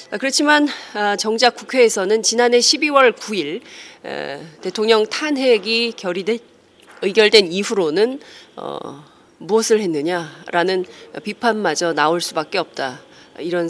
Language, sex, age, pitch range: Korean, female, 40-59, 175-245 Hz